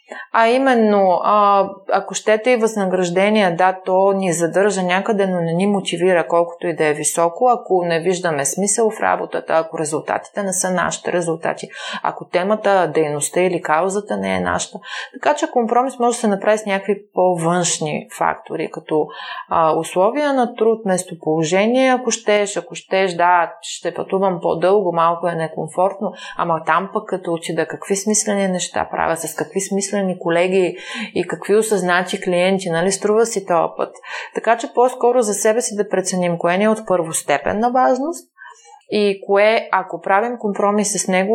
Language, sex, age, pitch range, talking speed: Bulgarian, female, 30-49, 175-220 Hz, 160 wpm